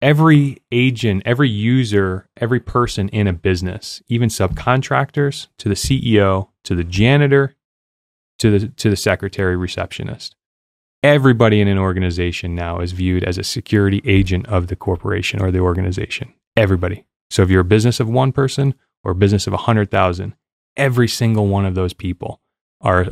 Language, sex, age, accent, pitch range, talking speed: English, male, 20-39, American, 90-115 Hz, 160 wpm